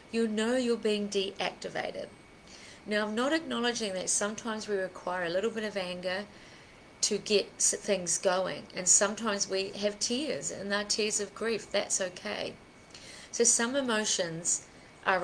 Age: 30-49